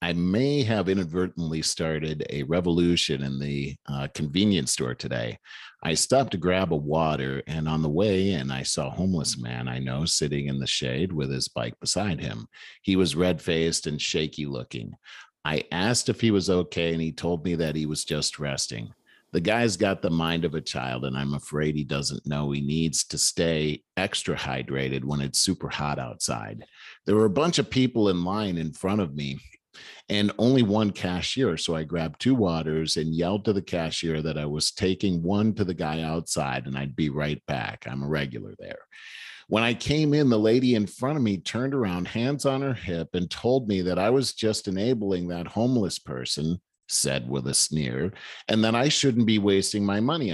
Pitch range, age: 75-105 Hz, 50-69